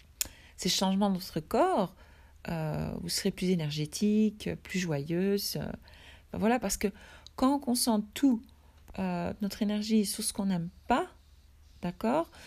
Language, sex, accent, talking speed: French, female, French, 145 wpm